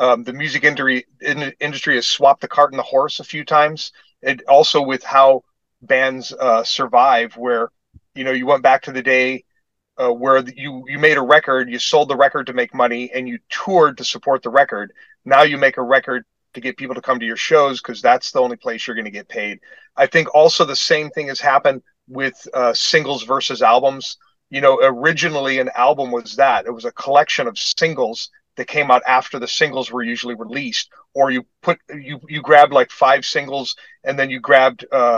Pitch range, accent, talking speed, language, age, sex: 130-155 Hz, American, 210 wpm, English, 40-59, male